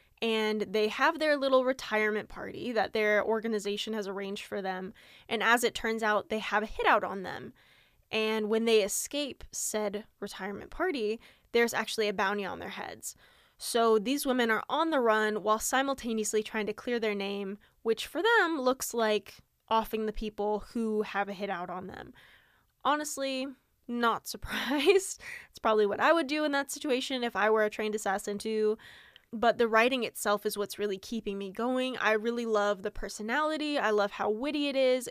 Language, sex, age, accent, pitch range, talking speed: English, female, 10-29, American, 210-265 Hz, 185 wpm